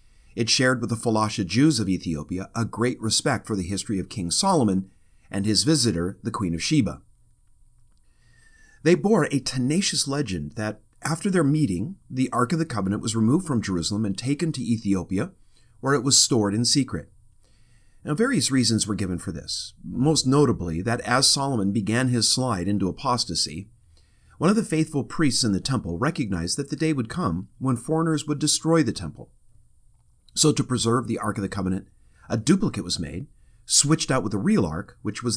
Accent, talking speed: American, 185 wpm